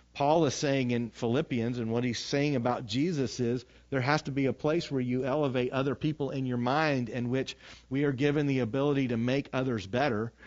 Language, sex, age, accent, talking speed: English, male, 40-59, American, 210 wpm